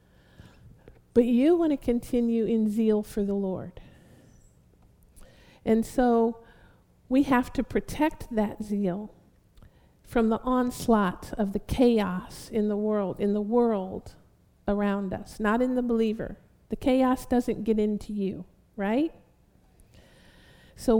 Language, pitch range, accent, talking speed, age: English, 210-255 Hz, American, 125 wpm, 50-69